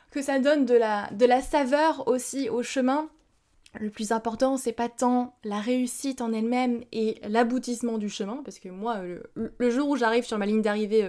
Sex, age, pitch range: female, 20-39, 220-260 Hz